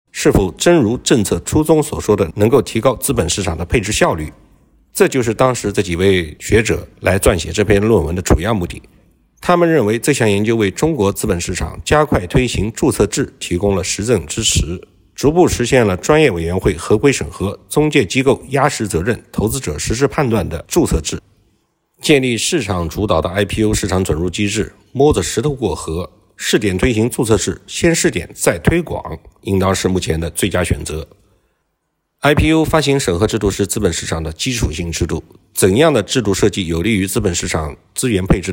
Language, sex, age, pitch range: Chinese, male, 50-69, 90-125 Hz